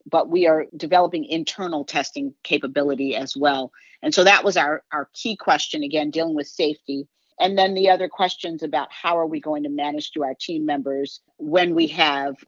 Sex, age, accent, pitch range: female, 40-59, American, 145-180 Hz